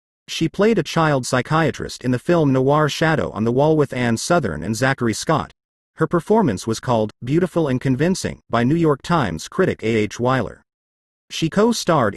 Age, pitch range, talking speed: 40-59, 115-165 Hz, 180 wpm